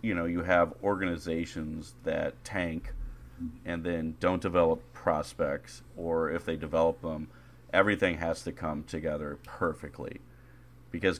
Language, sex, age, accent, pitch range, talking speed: English, male, 30-49, American, 85-125 Hz, 130 wpm